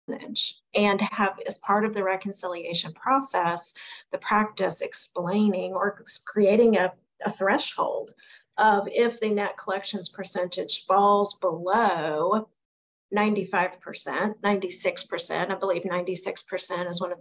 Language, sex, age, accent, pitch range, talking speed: English, female, 40-59, American, 180-210 Hz, 110 wpm